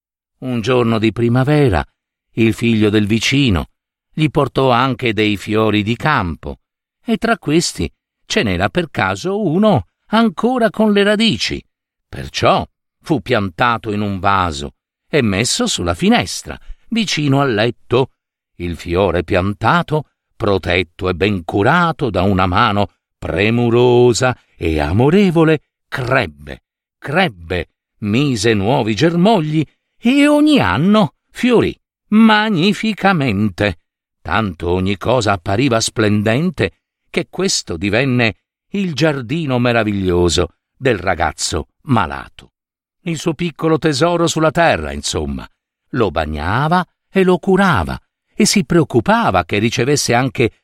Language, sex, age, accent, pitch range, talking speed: Italian, male, 50-69, native, 100-165 Hz, 115 wpm